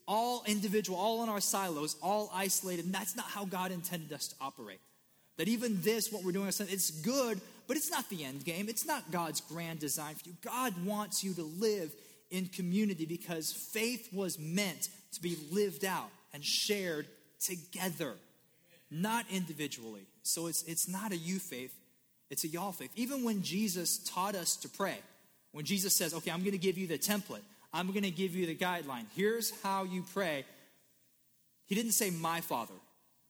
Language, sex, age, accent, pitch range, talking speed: English, male, 30-49, American, 150-200 Hz, 185 wpm